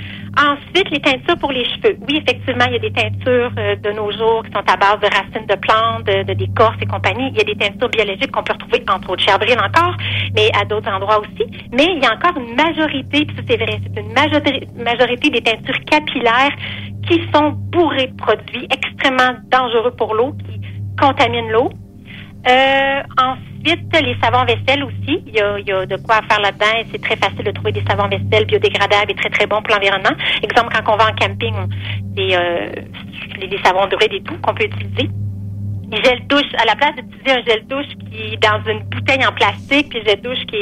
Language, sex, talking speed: English, female, 215 wpm